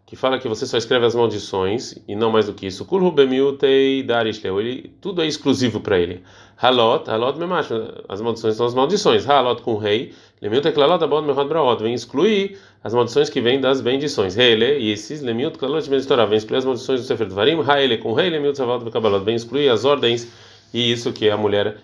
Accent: Brazilian